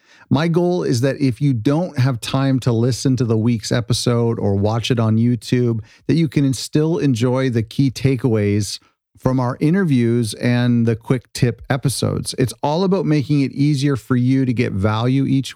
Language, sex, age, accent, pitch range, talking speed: English, male, 40-59, American, 115-135 Hz, 185 wpm